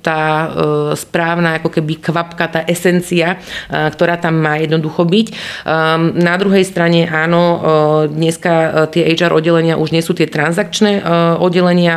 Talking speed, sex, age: 130 wpm, female, 30-49